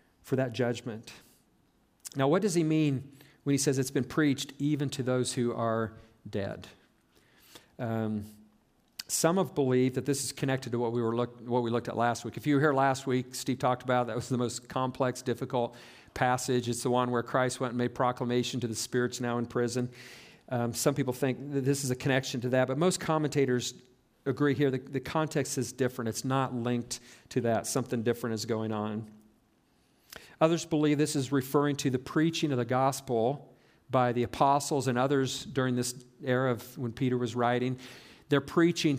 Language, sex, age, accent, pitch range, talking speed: English, male, 50-69, American, 120-140 Hz, 195 wpm